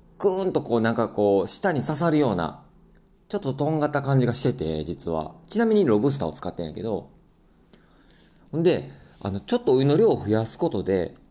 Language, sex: Japanese, male